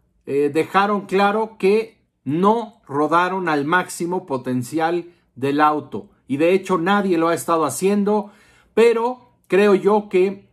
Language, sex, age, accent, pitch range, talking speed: Spanish, male, 50-69, Mexican, 165-200 Hz, 130 wpm